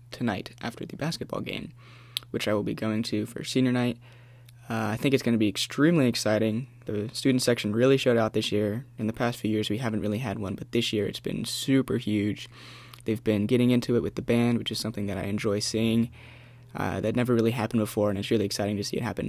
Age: 20-39